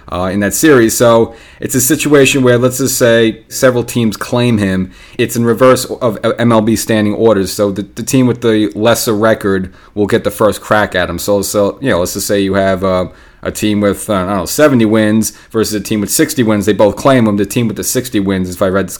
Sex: male